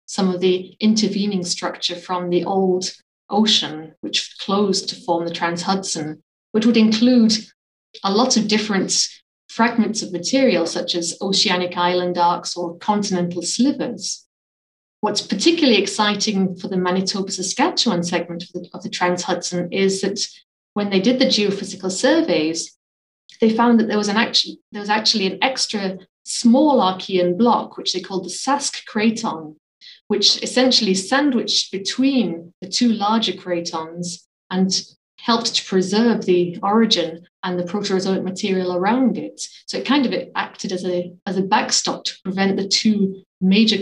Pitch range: 180-220 Hz